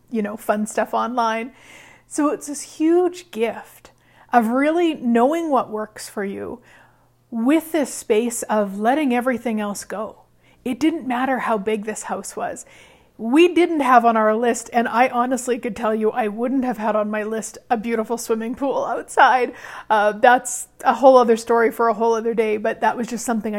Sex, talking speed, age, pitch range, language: female, 185 wpm, 40-59, 220-265 Hz, English